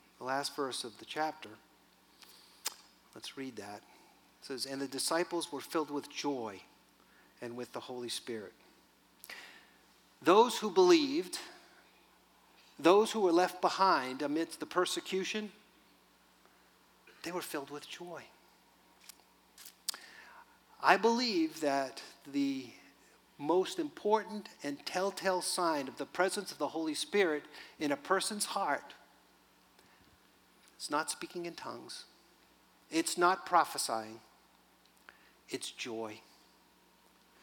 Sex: male